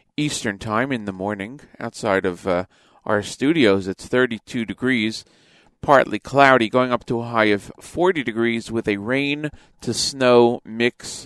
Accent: American